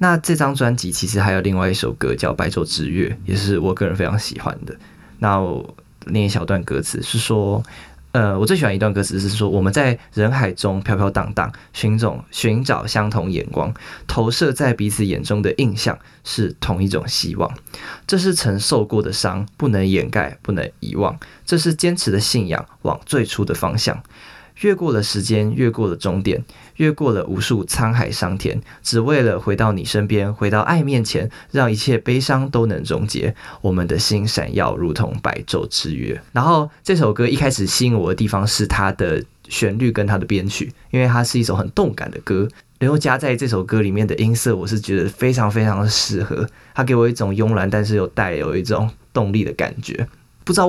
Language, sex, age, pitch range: Chinese, male, 20-39, 100-125 Hz